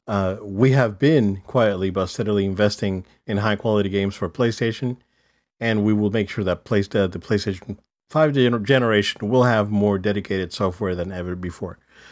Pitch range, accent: 95-115 Hz, American